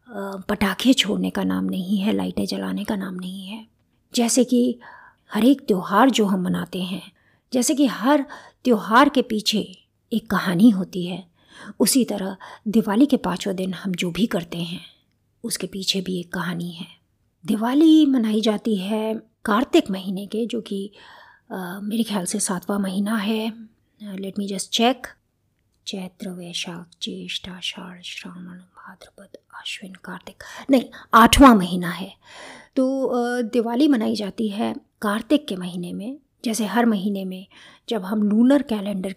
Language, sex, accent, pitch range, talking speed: Hindi, female, native, 190-235 Hz, 145 wpm